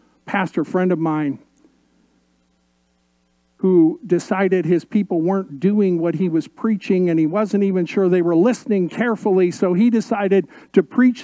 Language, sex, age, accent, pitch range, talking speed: English, male, 50-69, American, 150-250 Hz, 150 wpm